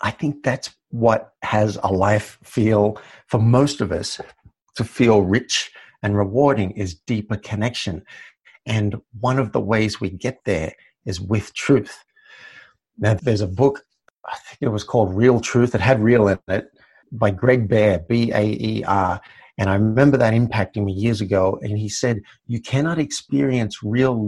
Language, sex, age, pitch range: English, male, 50-69, 105-130 Hz